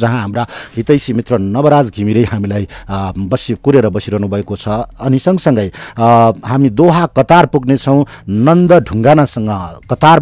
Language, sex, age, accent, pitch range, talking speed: English, male, 60-79, Indian, 115-150 Hz, 135 wpm